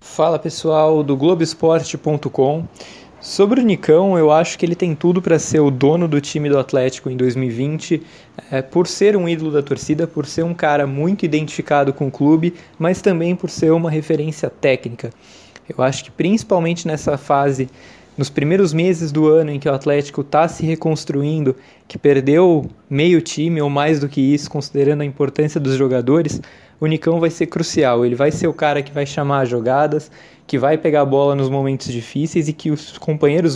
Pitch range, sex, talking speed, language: 140-165 Hz, male, 185 wpm, Portuguese